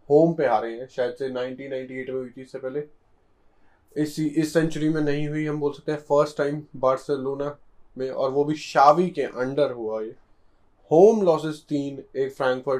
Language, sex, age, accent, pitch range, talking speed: Hindi, male, 20-39, native, 125-155 Hz, 70 wpm